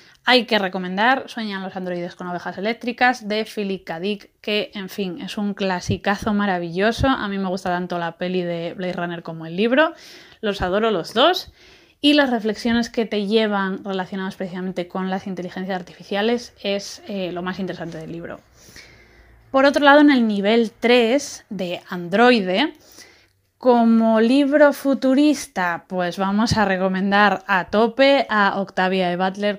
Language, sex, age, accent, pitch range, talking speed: Spanish, female, 20-39, Spanish, 185-240 Hz, 160 wpm